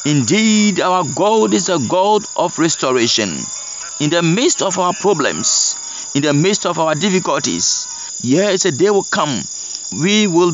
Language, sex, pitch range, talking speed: English, male, 170-220 Hz, 155 wpm